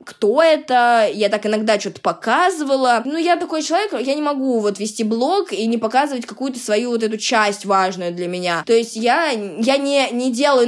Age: 20-39